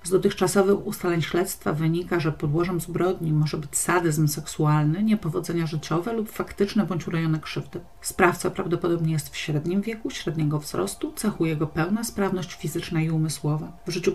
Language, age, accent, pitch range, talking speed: Polish, 40-59, native, 160-190 Hz, 155 wpm